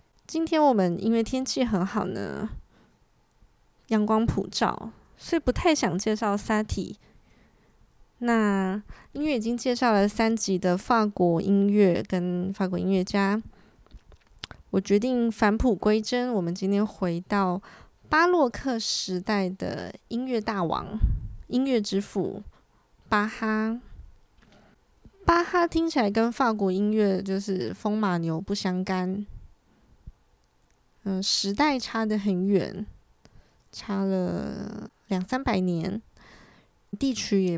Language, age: Chinese, 20-39